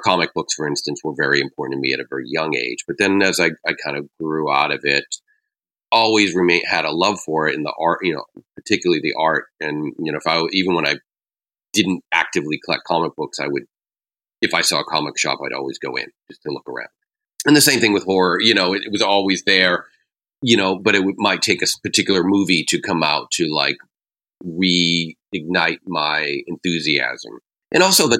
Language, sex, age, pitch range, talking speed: English, male, 40-59, 85-105 Hz, 220 wpm